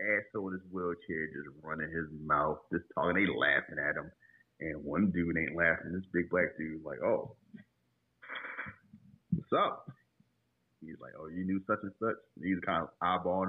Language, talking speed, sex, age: English, 175 wpm, male, 30-49